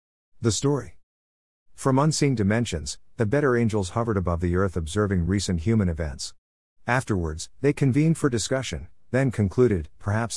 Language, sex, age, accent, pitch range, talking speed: English, male, 50-69, American, 85-115 Hz, 140 wpm